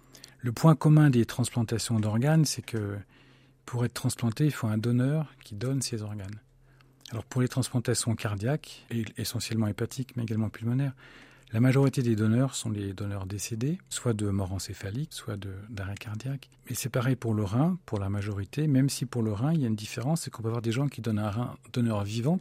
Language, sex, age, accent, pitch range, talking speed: French, male, 40-59, French, 110-135 Hz, 205 wpm